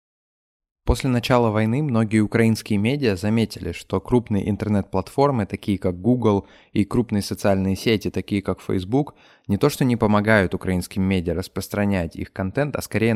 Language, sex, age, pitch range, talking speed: Russian, male, 20-39, 95-110 Hz, 145 wpm